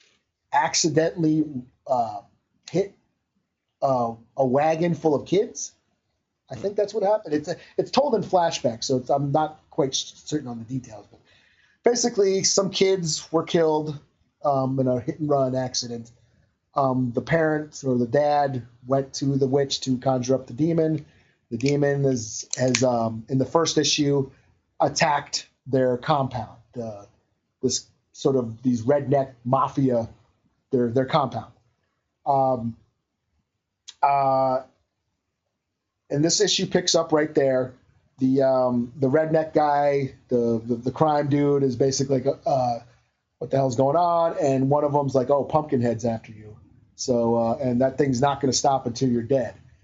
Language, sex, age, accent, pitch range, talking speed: English, male, 30-49, American, 120-150 Hz, 155 wpm